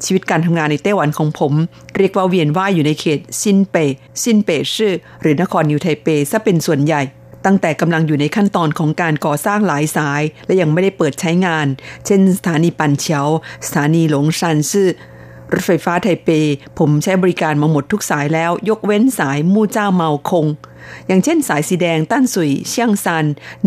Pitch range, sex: 150-190 Hz, female